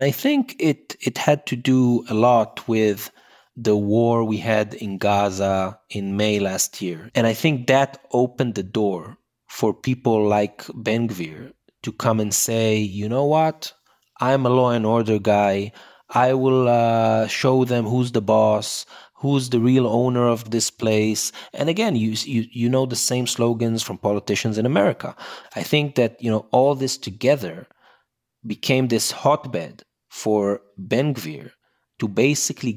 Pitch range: 110-145 Hz